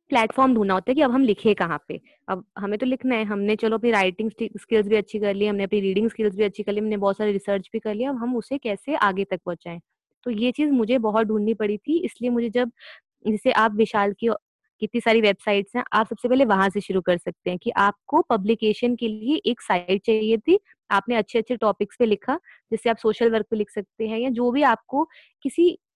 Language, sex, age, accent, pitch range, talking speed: Hindi, female, 20-39, native, 210-260 Hz, 235 wpm